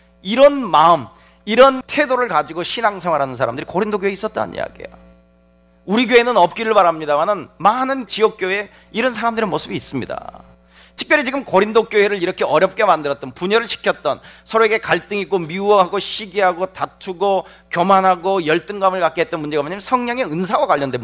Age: 40-59